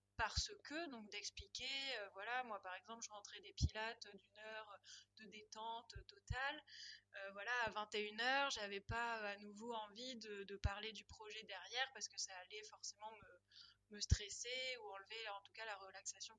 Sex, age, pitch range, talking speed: female, 20-39, 195-235 Hz, 170 wpm